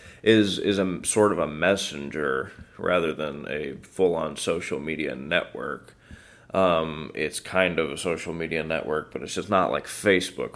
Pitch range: 85-100 Hz